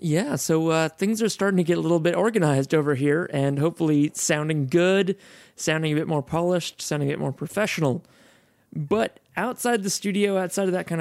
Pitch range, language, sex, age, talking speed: 145-175 Hz, English, male, 30-49, 195 wpm